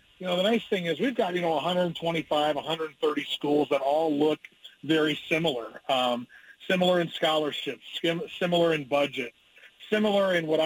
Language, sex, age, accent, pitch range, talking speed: English, male, 40-59, American, 145-180 Hz, 160 wpm